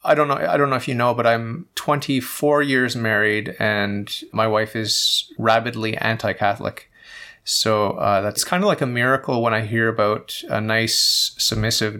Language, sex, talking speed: English, male, 175 wpm